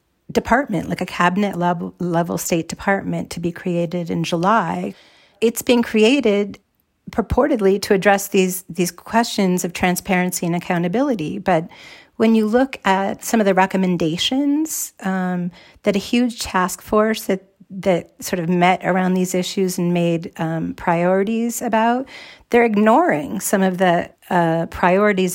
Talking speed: 140 wpm